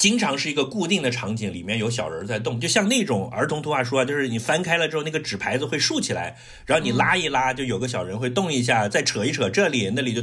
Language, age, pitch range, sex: Chinese, 50-69, 115-155 Hz, male